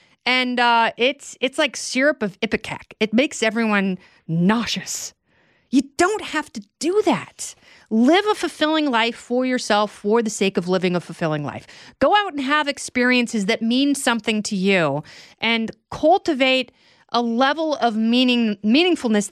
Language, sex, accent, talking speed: English, female, American, 150 wpm